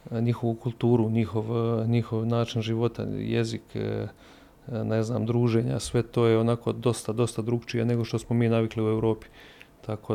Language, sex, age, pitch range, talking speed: Croatian, male, 30-49, 110-120 Hz, 150 wpm